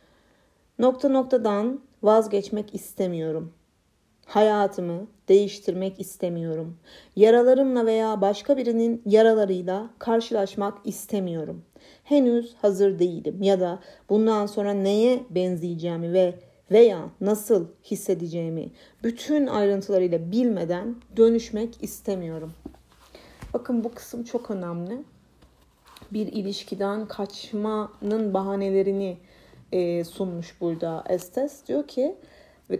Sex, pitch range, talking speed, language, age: female, 185-235 Hz, 85 wpm, Turkish, 40-59